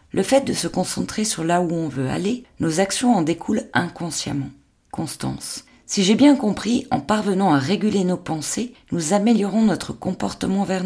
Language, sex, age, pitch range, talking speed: French, female, 40-59, 155-215 Hz, 175 wpm